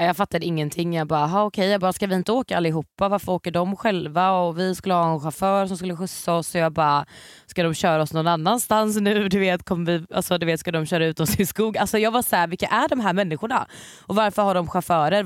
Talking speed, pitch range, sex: 265 wpm, 165-210 Hz, female